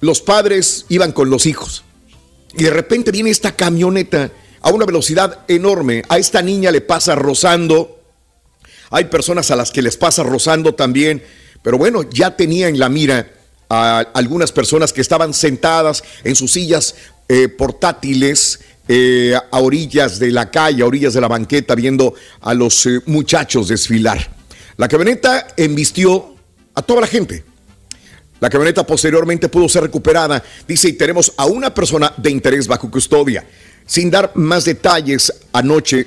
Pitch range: 125-170 Hz